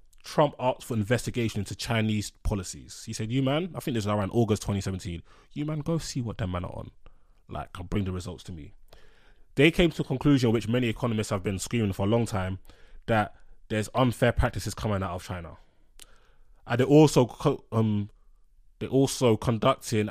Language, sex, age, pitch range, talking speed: English, male, 20-39, 95-120 Hz, 190 wpm